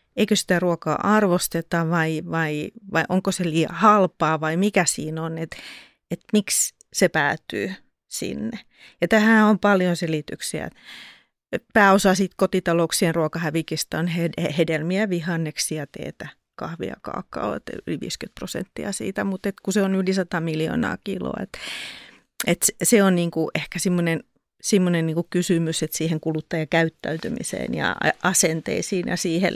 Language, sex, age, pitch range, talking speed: Finnish, female, 30-49, 160-195 Hz, 130 wpm